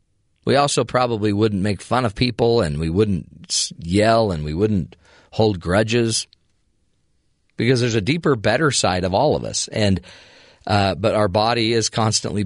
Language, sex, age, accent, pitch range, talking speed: English, male, 40-59, American, 100-120 Hz, 165 wpm